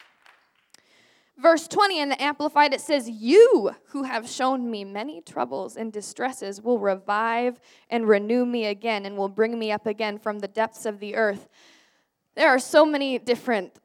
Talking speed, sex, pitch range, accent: 170 wpm, female, 230-300 Hz, American